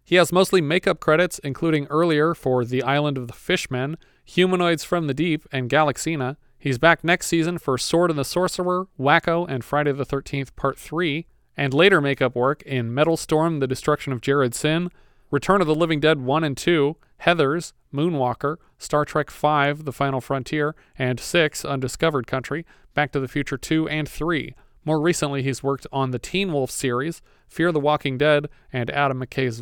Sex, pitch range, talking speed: male, 135-160 Hz, 180 wpm